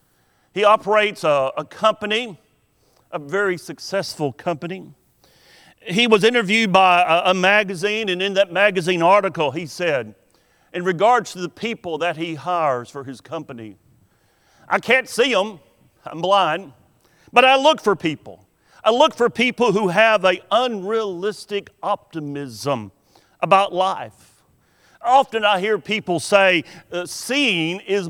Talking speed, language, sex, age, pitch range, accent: 135 wpm, English, male, 50-69, 160-215 Hz, American